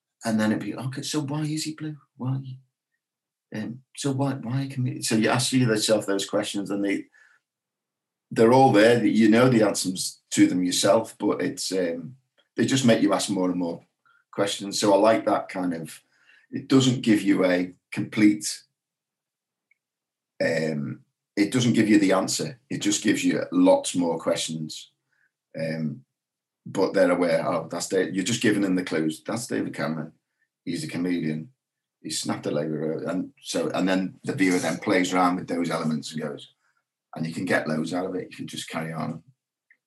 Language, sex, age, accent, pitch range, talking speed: English, male, 40-59, British, 85-135 Hz, 185 wpm